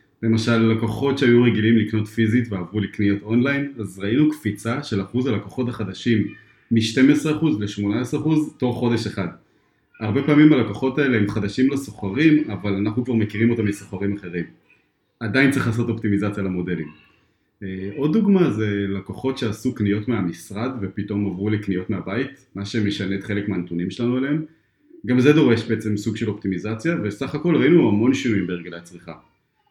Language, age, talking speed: English, 30-49, 140 wpm